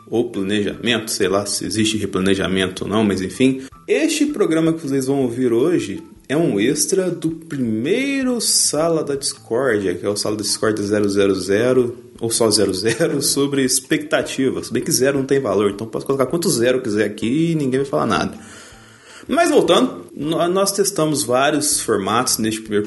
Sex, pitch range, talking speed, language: male, 100-155 Hz, 170 wpm, Portuguese